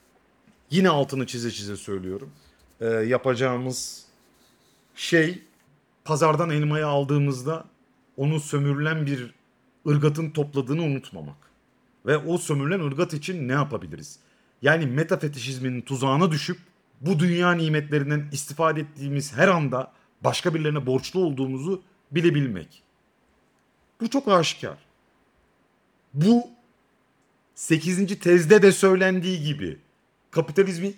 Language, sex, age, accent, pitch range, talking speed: Turkish, male, 40-59, native, 140-185 Hz, 95 wpm